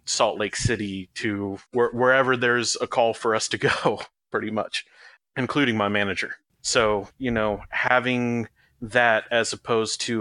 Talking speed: 145 wpm